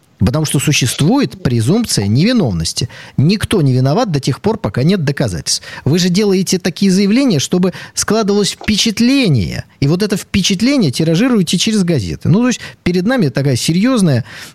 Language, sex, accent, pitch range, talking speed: Russian, male, native, 125-180 Hz, 150 wpm